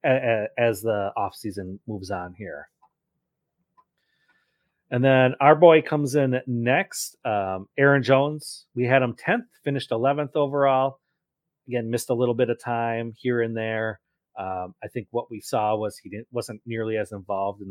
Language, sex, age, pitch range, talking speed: English, male, 30-49, 105-140 Hz, 160 wpm